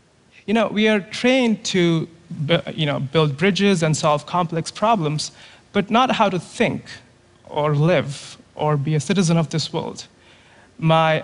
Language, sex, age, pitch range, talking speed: Russian, male, 30-49, 145-185 Hz, 155 wpm